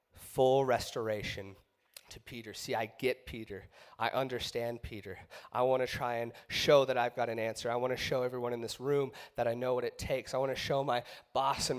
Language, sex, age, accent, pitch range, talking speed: English, male, 30-49, American, 120-155 Hz, 220 wpm